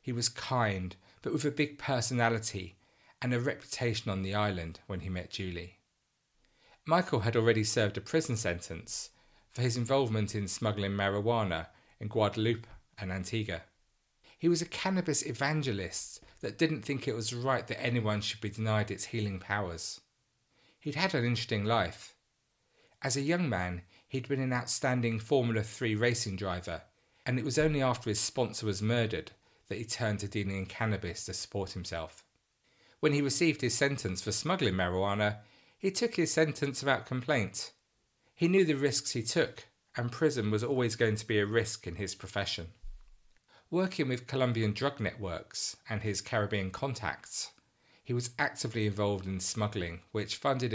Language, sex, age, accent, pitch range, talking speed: English, male, 40-59, British, 100-130 Hz, 165 wpm